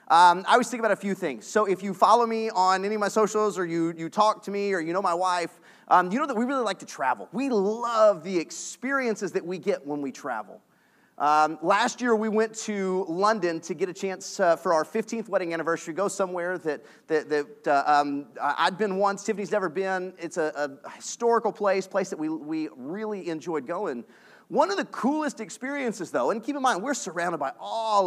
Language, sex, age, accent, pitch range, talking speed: English, male, 30-49, American, 165-220 Hz, 220 wpm